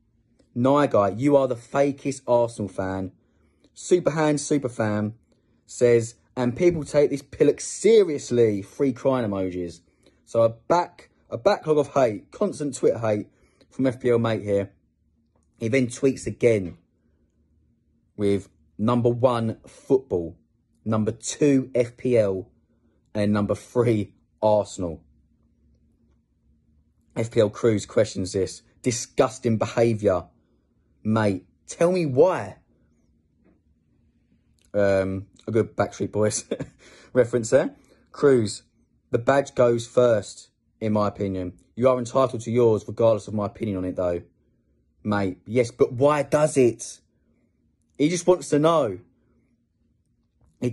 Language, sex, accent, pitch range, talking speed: English, male, British, 95-130 Hz, 115 wpm